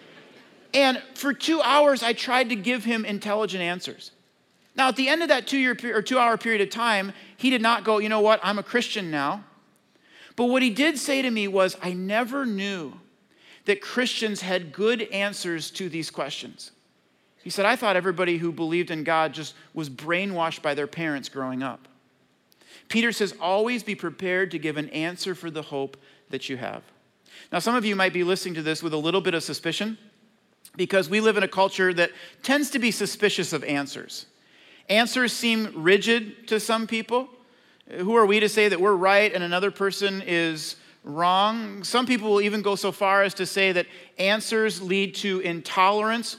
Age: 40-59